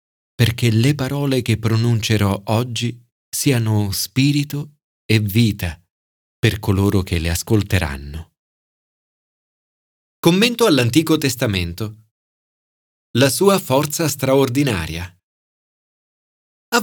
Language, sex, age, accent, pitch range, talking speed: Italian, male, 40-59, native, 105-165 Hz, 80 wpm